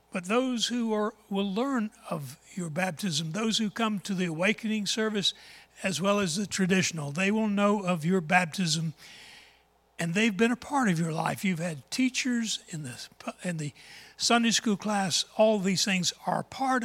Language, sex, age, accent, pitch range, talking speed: English, male, 60-79, American, 165-210 Hz, 180 wpm